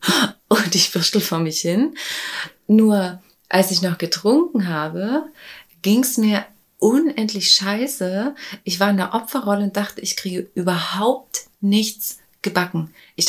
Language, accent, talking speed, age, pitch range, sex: German, German, 135 wpm, 30-49, 180-215 Hz, female